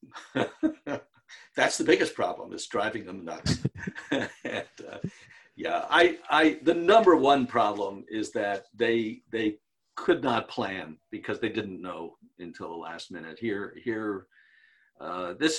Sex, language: male, English